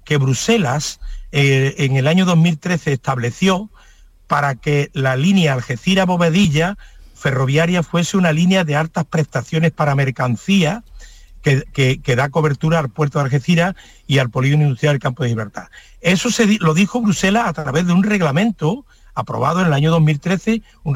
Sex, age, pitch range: male, 50-69, 140-190 Hz